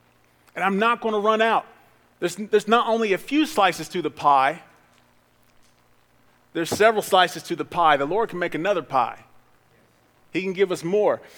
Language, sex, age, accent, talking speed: English, male, 40-59, American, 180 wpm